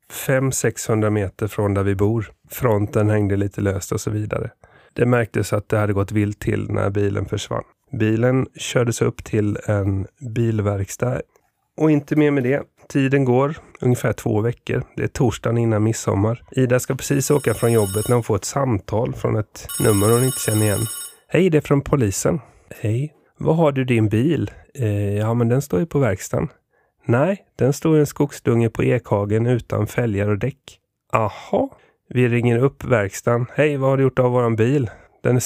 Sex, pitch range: male, 105-130 Hz